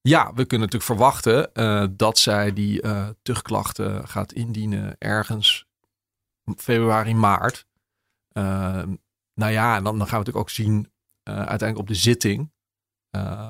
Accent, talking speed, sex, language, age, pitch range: Dutch, 140 wpm, male, Dutch, 40-59, 100-115 Hz